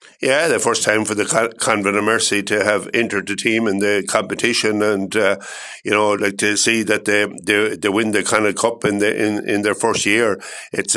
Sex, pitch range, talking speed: male, 100-115 Hz, 225 wpm